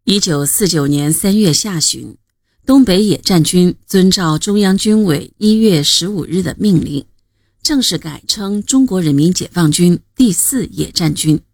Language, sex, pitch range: Chinese, female, 135-195 Hz